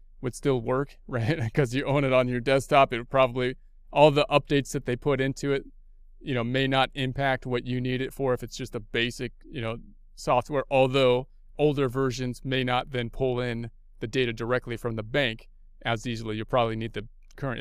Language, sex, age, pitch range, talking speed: English, male, 30-49, 125-155 Hz, 210 wpm